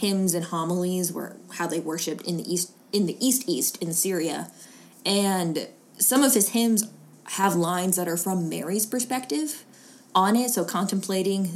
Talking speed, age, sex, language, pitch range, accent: 160 wpm, 20-39, female, English, 175-245 Hz, American